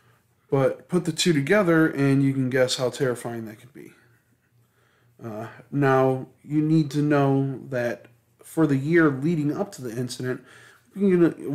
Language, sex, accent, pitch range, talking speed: English, male, American, 120-150 Hz, 160 wpm